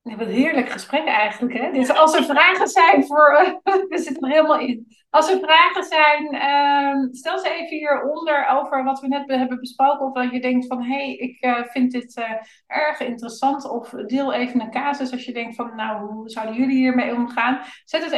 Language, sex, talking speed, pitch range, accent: Dutch, female, 215 wpm, 230-275 Hz, Dutch